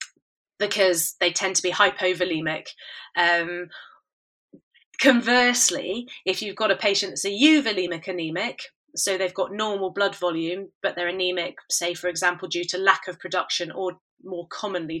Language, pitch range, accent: English, 180-220 Hz, British